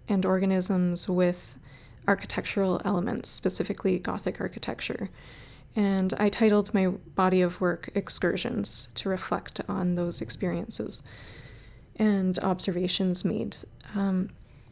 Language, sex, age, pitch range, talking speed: English, female, 20-39, 180-205 Hz, 100 wpm